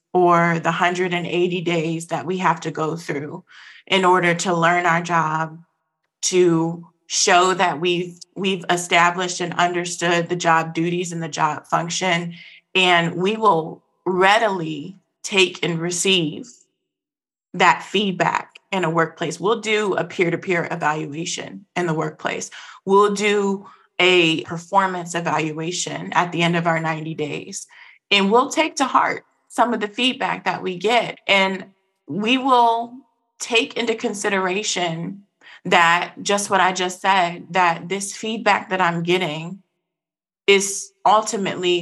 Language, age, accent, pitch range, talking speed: English, 20-39, American, 170-195 Hz, 135 wpm